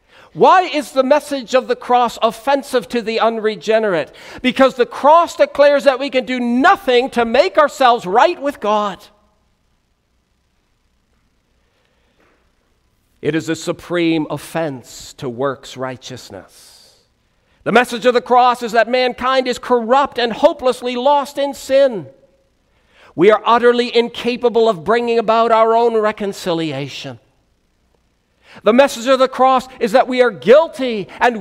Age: 50-69